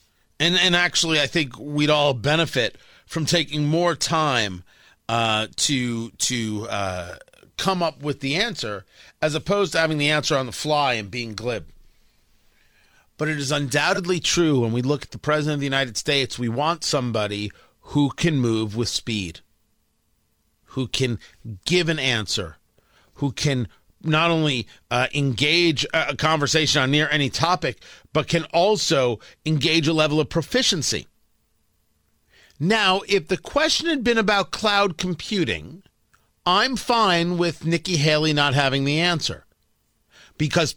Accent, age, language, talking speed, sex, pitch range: American, 40-59, English, 145 wpm, male, 125-170 Hz